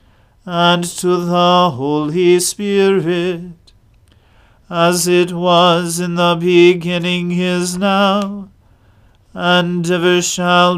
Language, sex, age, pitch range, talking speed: English, male, 40-59, 150-180 Hz, 90 wpm